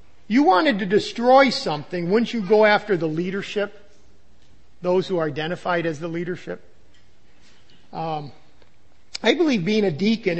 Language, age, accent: English, 50-69, American